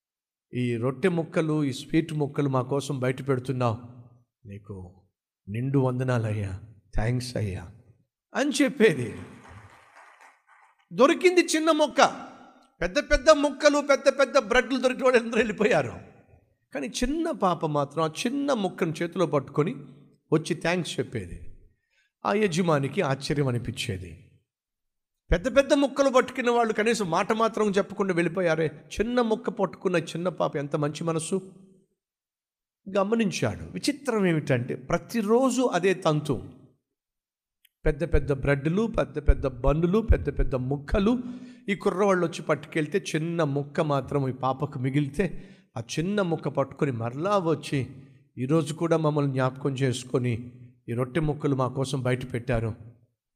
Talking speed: 120 wpm